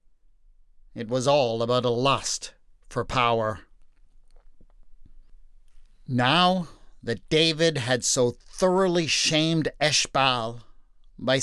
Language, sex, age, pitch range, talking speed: English, male, 50-69, 120-150 Hz, 90 wpm